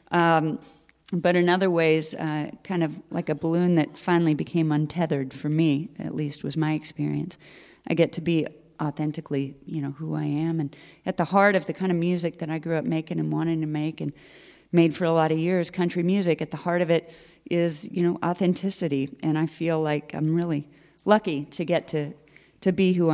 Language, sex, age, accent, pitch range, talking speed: English, female, 30-49, American, 150-170 Hz, 210 wpm